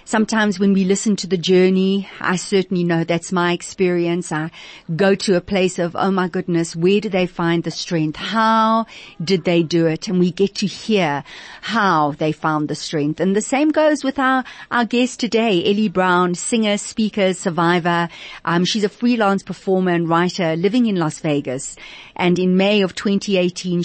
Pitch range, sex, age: 175-210 Hz, female, 50-69